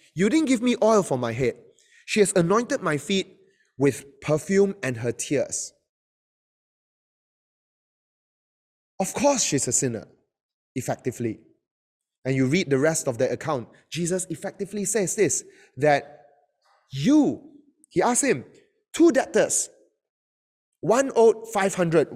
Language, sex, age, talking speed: English, male, 20-39, 125 wpm